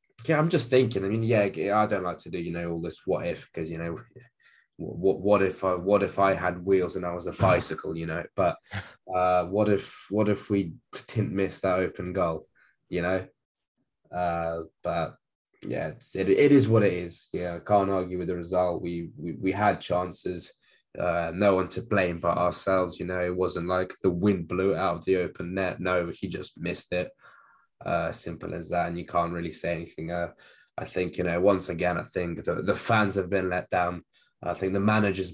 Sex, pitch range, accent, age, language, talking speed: male, 85-100 Hz, British, 20-39, English, 215 wpm